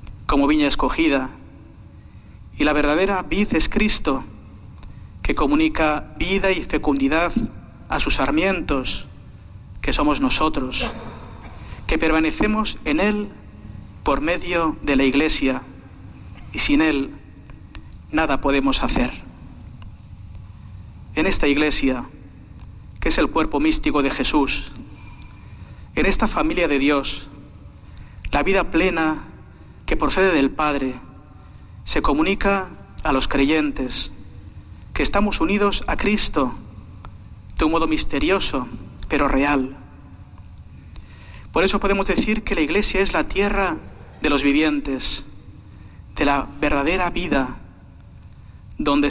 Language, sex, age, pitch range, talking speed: Spanish, male, 40-59, 95-160 Hz, 110 wpm